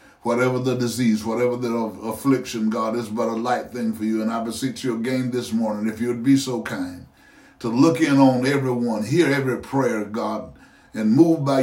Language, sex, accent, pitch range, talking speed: English, male, American, 110-125 Hz, 195 wpm